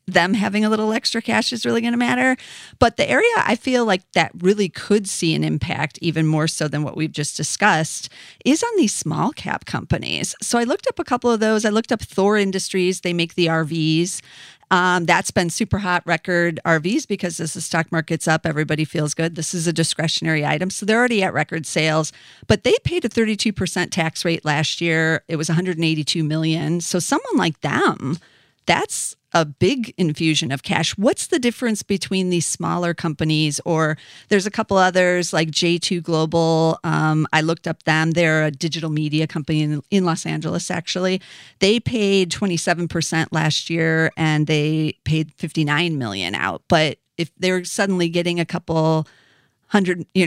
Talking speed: 185 wpm